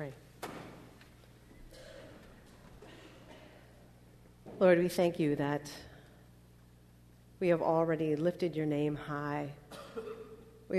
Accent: American